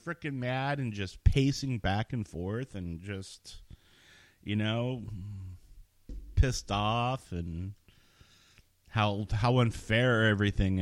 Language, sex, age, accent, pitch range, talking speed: English, male, 30-49, American, 90-110 Hz, 105 wpm